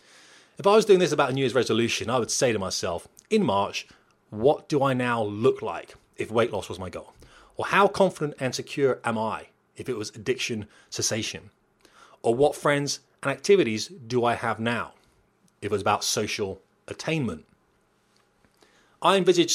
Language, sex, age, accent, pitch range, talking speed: English, male, 30-49, British, 115-155 Hz, 180 wpm